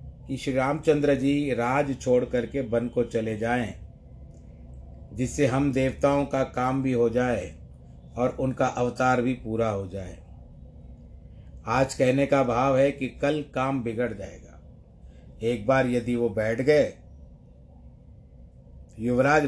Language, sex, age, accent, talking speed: Hindi, male, 50-69, native, 130 wpm